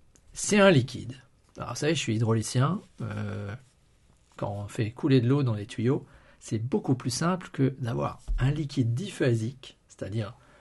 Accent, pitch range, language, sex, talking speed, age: French, 115-155 Hz, French, male, 160 wpm, 50-69